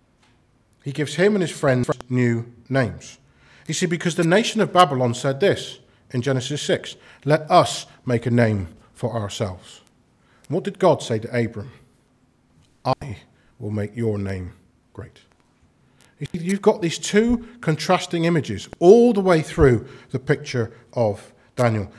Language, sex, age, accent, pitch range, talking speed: English, male, 40-59, British, 120-170 Hz, 145 wpm